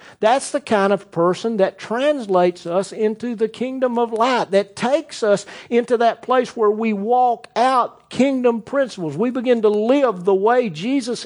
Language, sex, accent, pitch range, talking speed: English, male, American, 200-275 Hz, 170 wpm